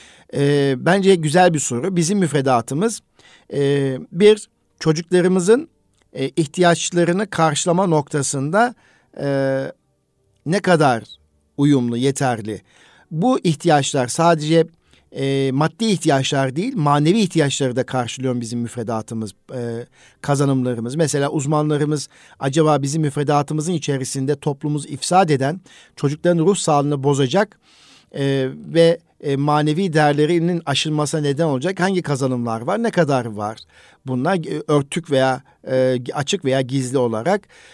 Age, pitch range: 50-69, 135-170 Hz